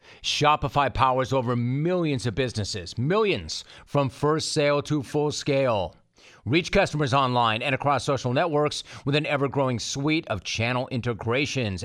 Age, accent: 40-59, American